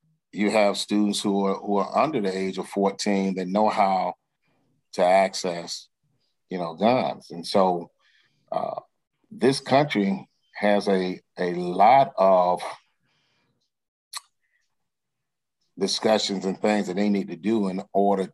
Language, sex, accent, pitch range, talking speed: English, male, American, 95-110 Hz, 130 wpm